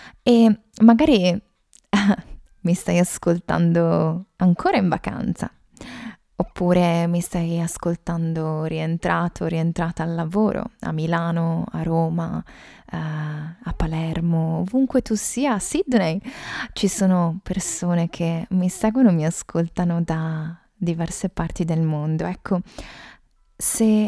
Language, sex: Italian, female